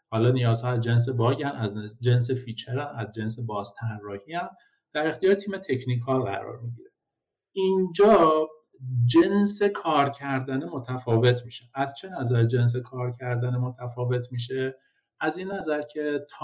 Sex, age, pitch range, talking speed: male, 50-69, 115-145 Hz, 140 wpm